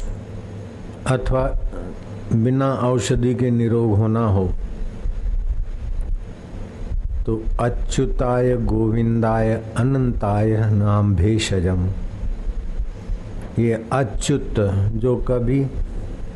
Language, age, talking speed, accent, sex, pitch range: Hindi, 60-79, 60 wpm, native, male, 95-125 Hz